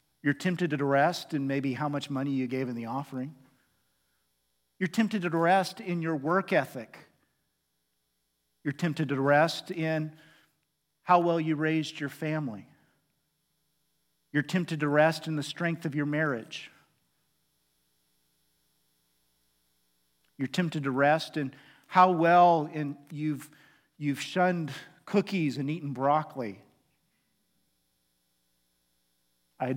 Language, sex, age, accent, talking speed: English, male, 50-69, American, 120 wpm